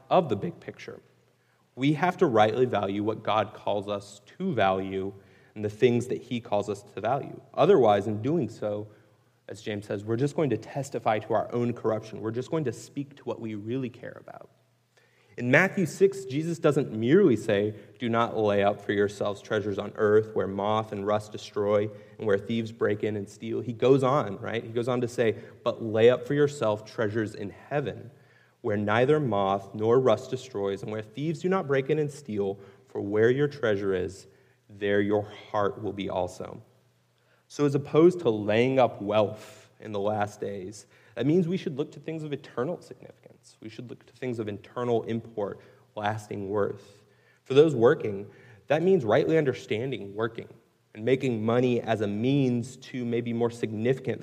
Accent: American